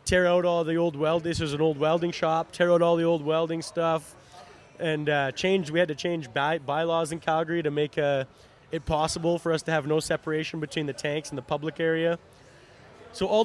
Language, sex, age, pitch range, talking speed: English, male, 20-39, 155-180 Hz, 220 wpm